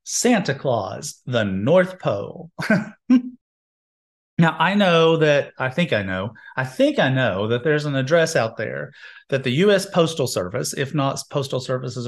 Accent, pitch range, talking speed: American, 120-155 Hz, 160 wpm